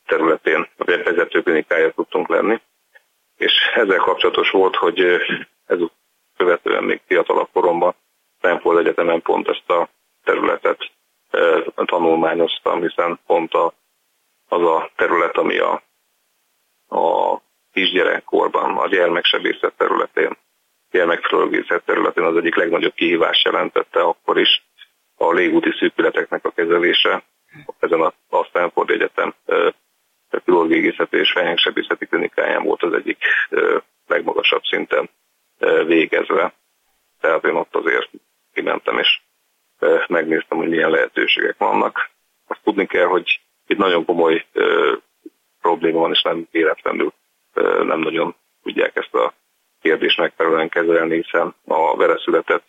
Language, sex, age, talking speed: Hungarian, male, 40-59, 115 wpm